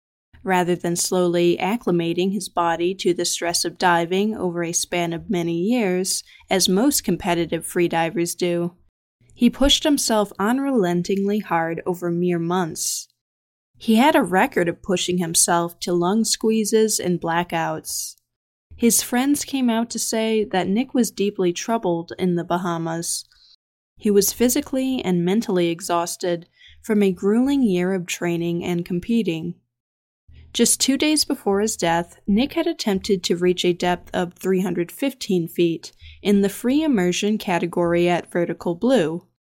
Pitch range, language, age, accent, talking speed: 170-220 Hz, English, 20-39, American, 145 wpm